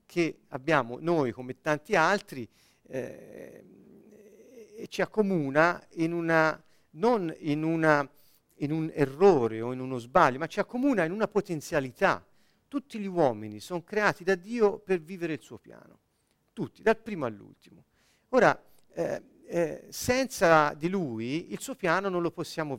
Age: 40-59